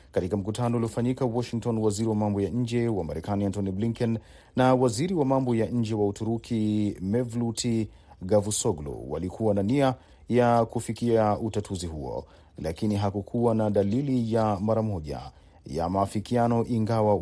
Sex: male